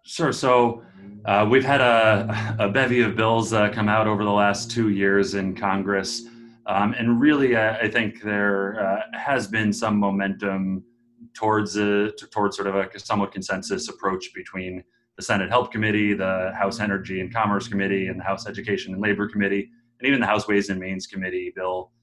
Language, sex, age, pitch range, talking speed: English, male, 30-49, 95-115 Hz, 185 wpm